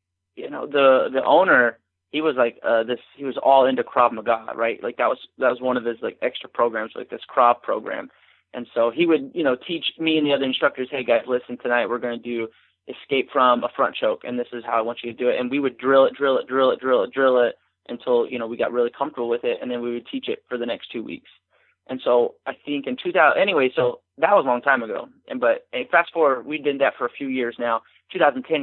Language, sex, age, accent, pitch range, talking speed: English, male, 20-39, American, 120-145 Hz, 270 wpm